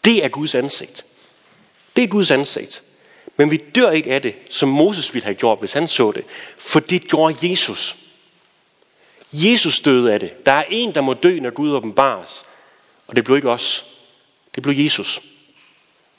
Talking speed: 180 wpm